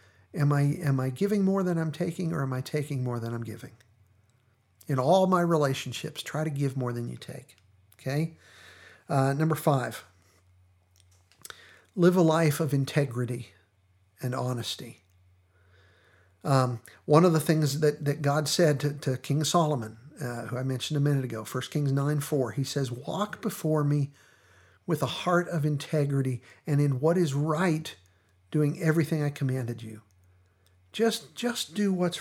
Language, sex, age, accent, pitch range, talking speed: English, male, 50-69, American, 95-155 Hz, 160 wpm